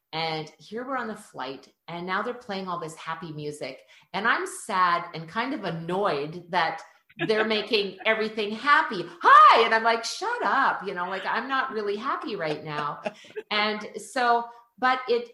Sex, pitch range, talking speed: female, 155-215 Hz, 175 wpm